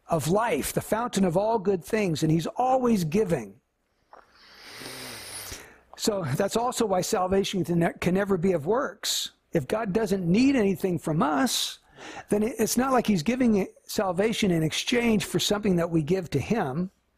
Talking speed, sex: 155 wpm, male